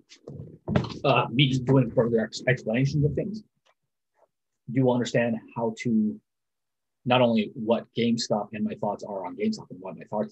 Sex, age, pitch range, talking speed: male, 30-49, 110-135 Hz, 155 wpm